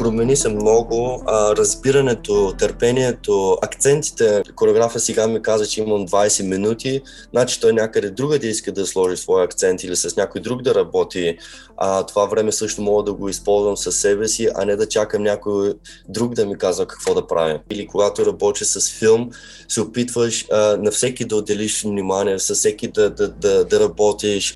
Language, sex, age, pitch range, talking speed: Bulgarian, male, 20-39, 110-145 Hz, 180 wpm